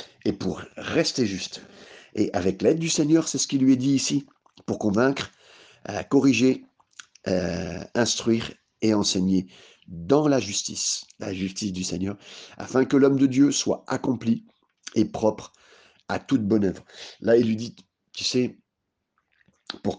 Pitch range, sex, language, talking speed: 95-120 Hz, male, French, 155 wpm